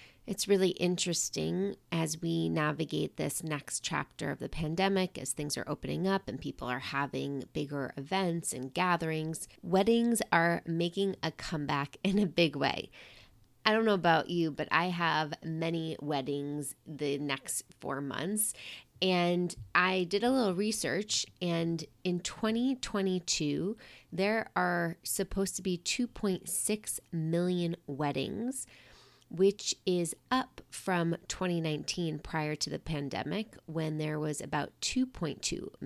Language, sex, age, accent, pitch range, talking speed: English, female, 30-49, American, 145-190 Hz, 130 wpm